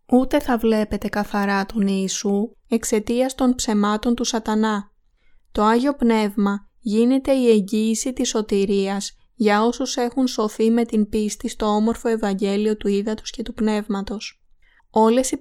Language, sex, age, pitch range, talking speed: Greek, female, 20-39, 205-235 Hz, 140 wpm